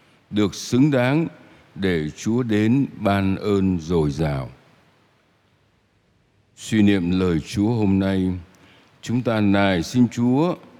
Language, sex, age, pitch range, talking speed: Vietnamese, male, 60-79, 95-130 Hz, 115 wpm